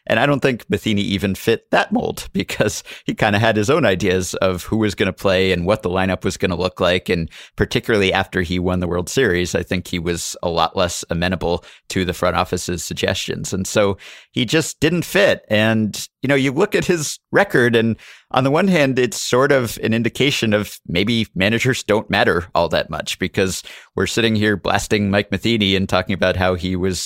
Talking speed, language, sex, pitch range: 215 wpm, English, male, 95-115 Hz